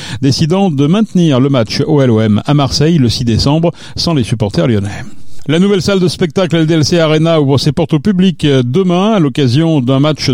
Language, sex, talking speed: French, male, 185 wpm